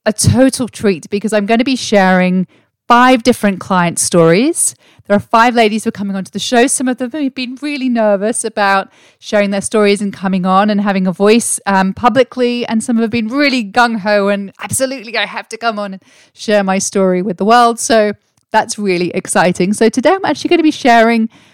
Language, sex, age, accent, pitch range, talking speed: English, female, 30-49, British, 180-230 Hz, 210 wpm